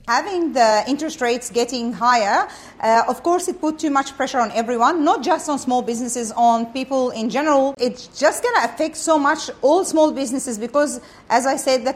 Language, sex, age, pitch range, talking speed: Croatian, female, 40-59, 180-255 Hz, 200 wpm